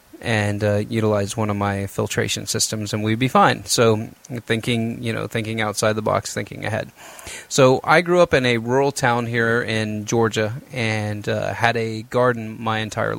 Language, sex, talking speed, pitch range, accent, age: English, male, 180 wpm, 110-125 Hz, American, 30-49